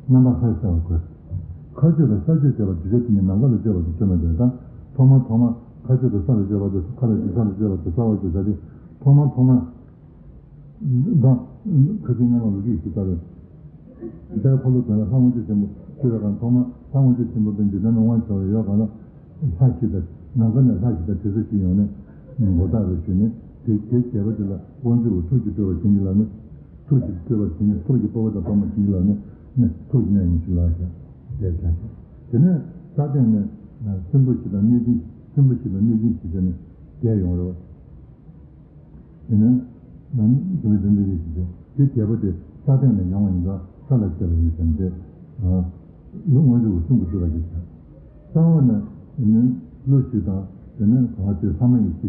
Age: 60-79